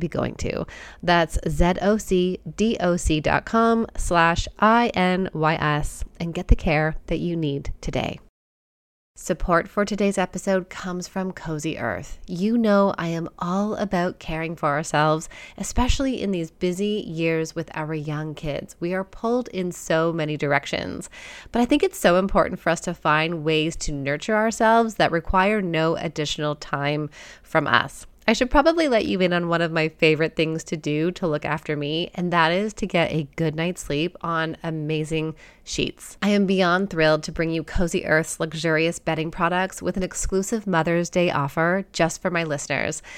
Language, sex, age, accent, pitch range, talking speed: English, female, 20-39, American, 160-190 Hz, 170 wpm